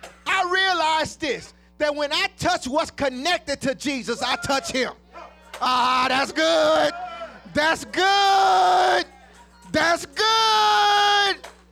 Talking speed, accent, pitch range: 110 wpm, American, 320-395 Hz